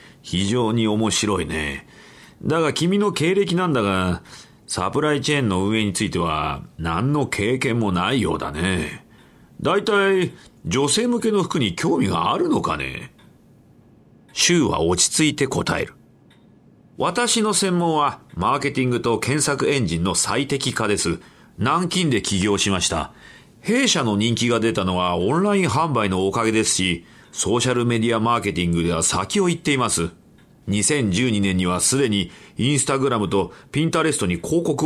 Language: Japanese